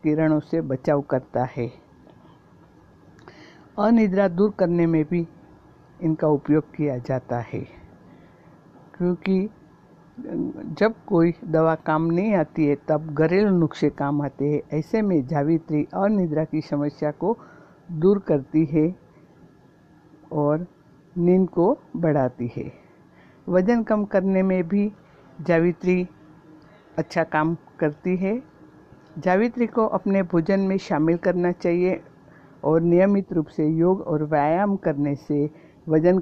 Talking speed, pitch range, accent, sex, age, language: 120 wpm, 150-185 Hz, native, female, 60-79, Hindi